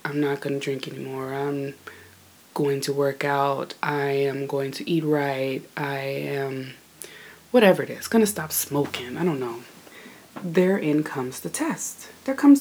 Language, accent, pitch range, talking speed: English, American, 140-185 Hz, 155 wpm